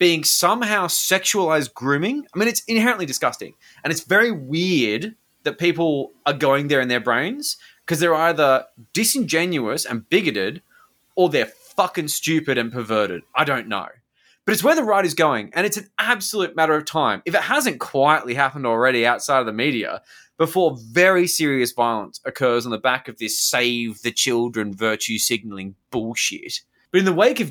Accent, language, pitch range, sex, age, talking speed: Australian, English, 120-190 Hz, male, 20-39, 175 wpm